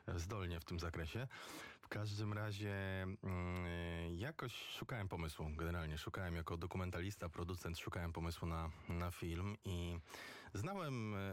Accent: native